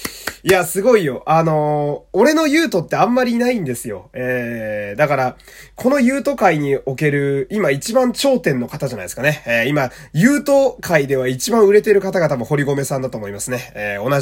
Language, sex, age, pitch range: Japanese, male, 20-39, 135-200 Hz